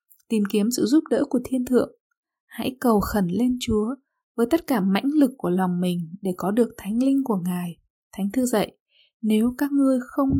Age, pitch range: 20-39, 210-270 Hz